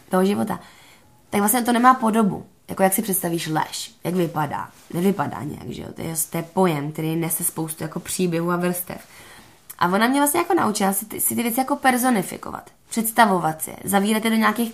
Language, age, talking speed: Czech, 20-39, 200 wpm